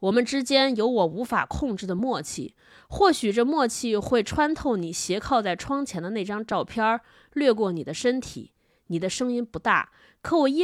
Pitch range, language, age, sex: 195-255 Hz, Chinese, 20-39, female